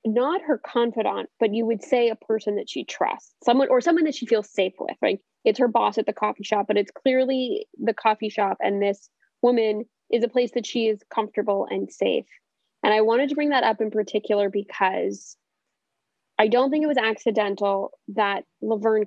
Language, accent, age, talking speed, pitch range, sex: English, American, 10-29, 200 wpm, 200-245 Hz, female